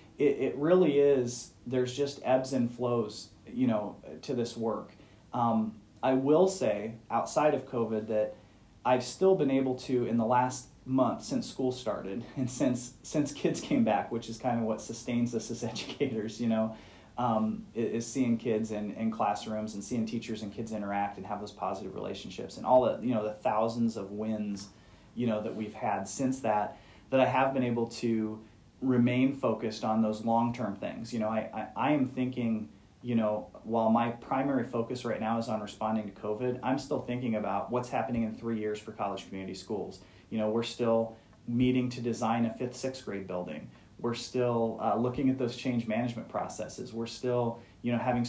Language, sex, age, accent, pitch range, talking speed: English, male, 30-49, American, 110-125 Hz, 195 wpm